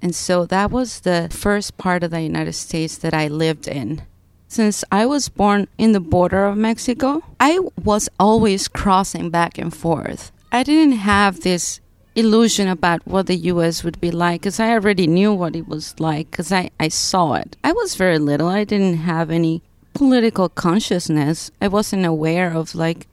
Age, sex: 30-49, female